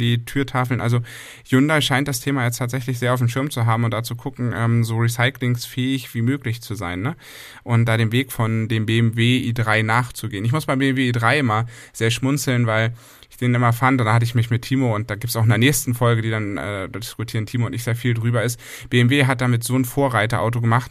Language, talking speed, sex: German, 235 wpm, male